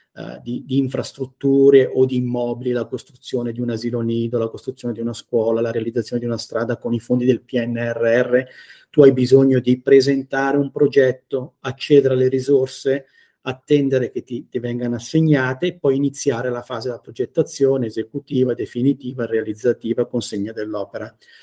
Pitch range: 125-145 Hz